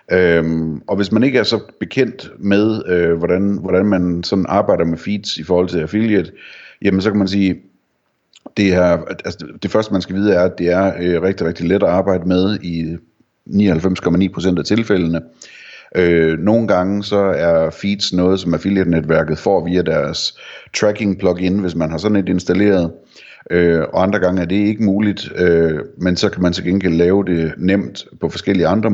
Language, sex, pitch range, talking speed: Danish, male, 85-100 Hz, 190 wpm